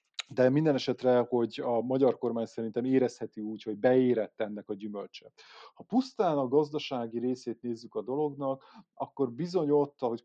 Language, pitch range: Hungarian, 115-140 Hz